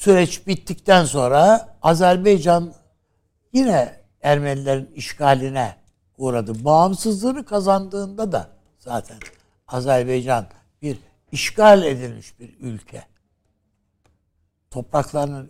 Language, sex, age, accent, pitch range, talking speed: Turkish, male, 60-79, native, 100-160 Hz, 75 wpm